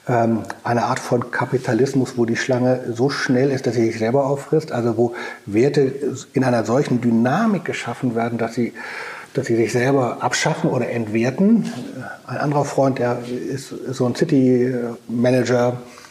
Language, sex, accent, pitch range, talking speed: German, male, German, 120-140 Hz, 155 wpm